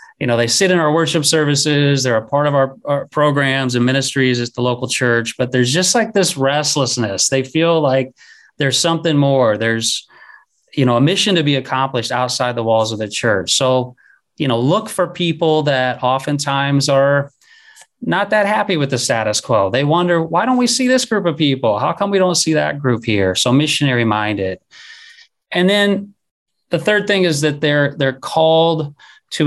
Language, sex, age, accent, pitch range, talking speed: English, male, 30-49, American, 115-150 Hz, 195 wpm